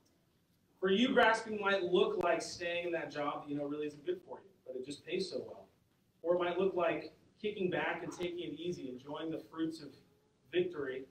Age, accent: 40-59, American